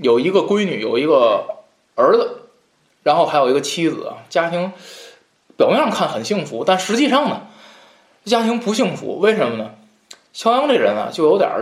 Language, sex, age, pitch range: Chinese, male, 20-39, 160-245 Hz